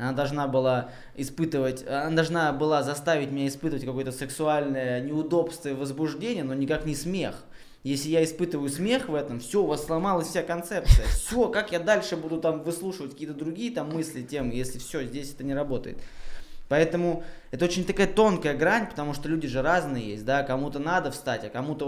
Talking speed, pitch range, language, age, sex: 185 wpm, 130-165 Hz, Russian, 20-39, male